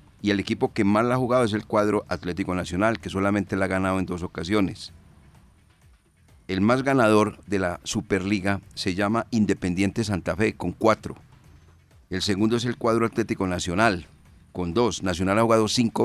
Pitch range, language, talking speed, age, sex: 90-110 Hz, Spanish, 175 wpm, 50-69, male